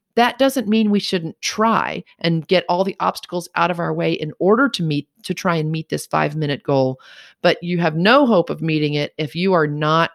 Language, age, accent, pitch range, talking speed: English, 40-59, American, 150-195 Hz, 230 wpm